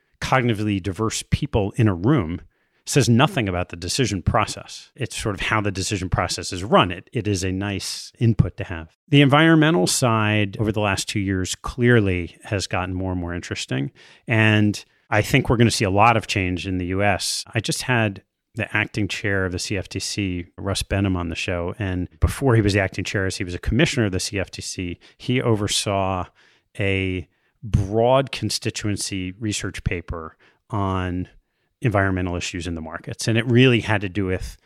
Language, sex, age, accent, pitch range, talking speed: English, male, 30-49, American, 95-115 Hz, 185 wpm